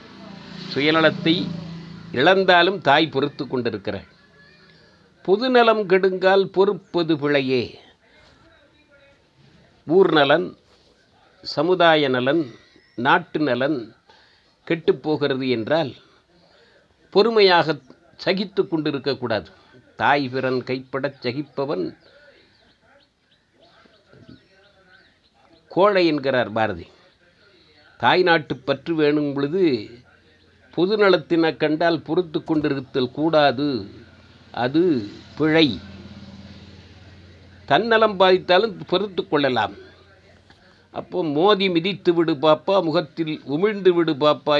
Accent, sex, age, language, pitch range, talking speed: native, male, 50-69, Tamil, 130-180 Hz, 65 wpm